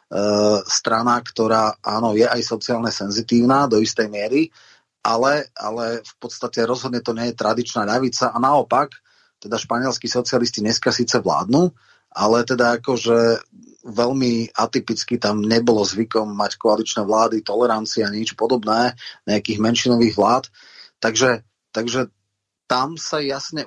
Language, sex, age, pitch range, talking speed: Slovak, male, 30-49, 110-130 Hz, 130 wpm